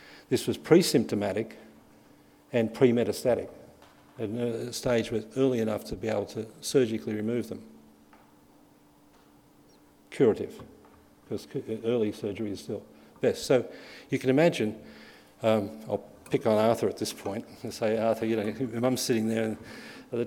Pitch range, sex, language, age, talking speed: 110-125 Hz, male, English, 50-69, 135 wpm